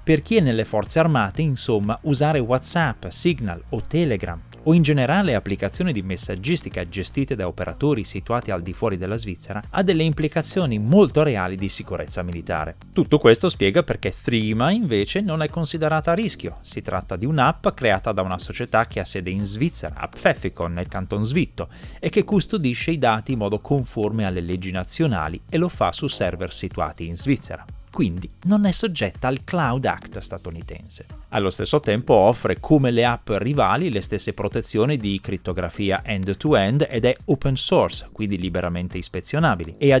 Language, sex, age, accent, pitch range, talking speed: Italian, male, 30-49, native, 95-150 Hz, 170 wpm